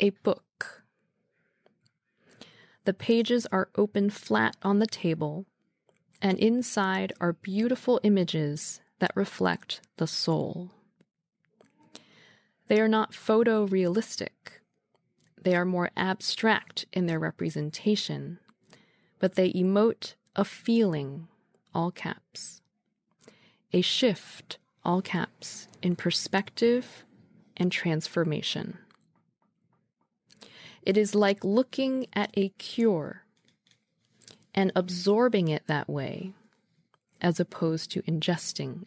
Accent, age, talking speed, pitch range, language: American, 20-39, 95 wpm, 175-215 Hz, English